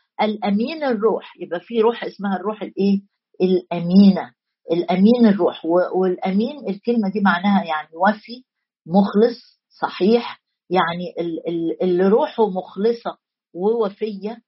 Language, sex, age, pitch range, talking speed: Arabic, female, 50-69, 195-245 Hz, 105 wpm